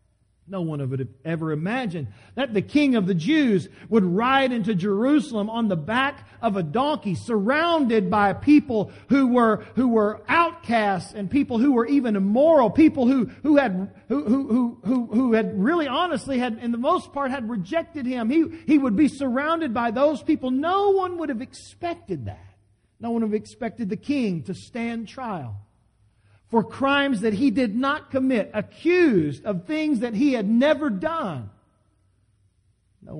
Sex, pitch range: male, 160-270 Hz